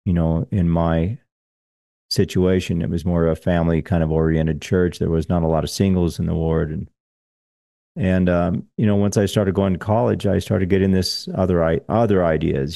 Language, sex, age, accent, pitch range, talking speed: English, male, 40-59, American, 85-100 Hz, 205 wpm